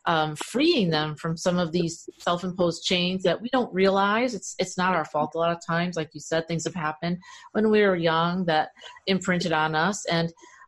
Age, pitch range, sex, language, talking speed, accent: 40-59, 165-195 Hz, female, English, 225 wpm, American